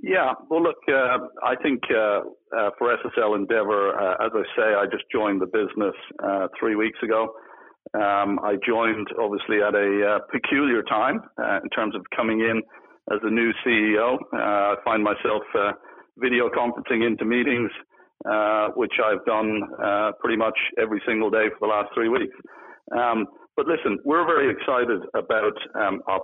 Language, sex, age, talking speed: English, male, 50-69, 175 wpm